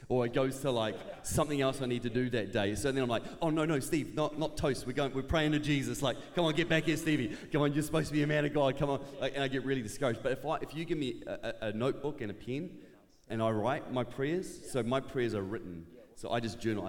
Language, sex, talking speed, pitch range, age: English, male, 290 wpm, 100-125 Hz, 30-49